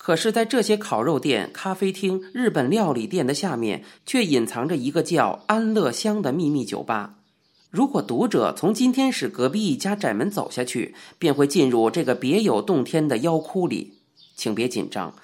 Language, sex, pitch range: Chinese, male, 125-200 Hz